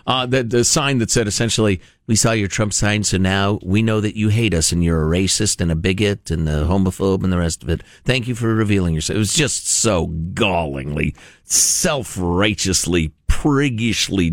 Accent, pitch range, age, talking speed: American, 100-170 Hz, 50-69, 195 wpm